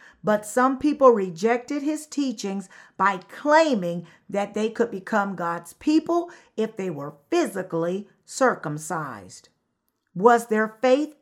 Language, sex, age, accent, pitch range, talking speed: English, female, 50-69, American, 190-280 Hz, 120 wpm